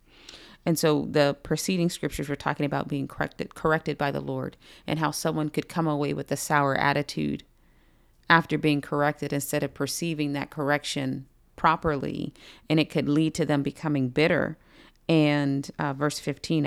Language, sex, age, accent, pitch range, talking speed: English, female, 40-59, American, 145-165 Hz, 160 wpm